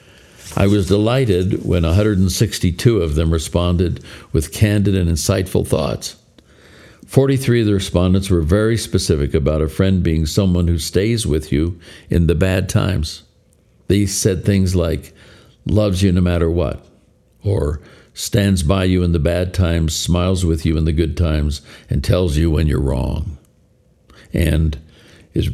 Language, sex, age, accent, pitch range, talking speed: English, male, 60-79, American, 80-105 Hz, 155 wpm